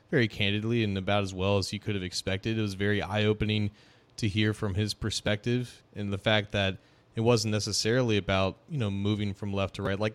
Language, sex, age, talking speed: English, male, 30-49, 215 wpm